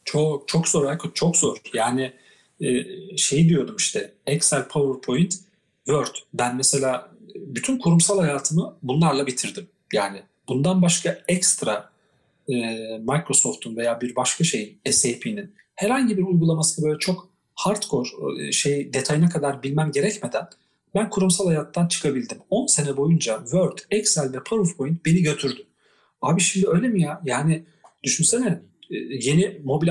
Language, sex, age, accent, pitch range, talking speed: Turkish, male, 40-59, native, 140-180 Hz, 125 wpm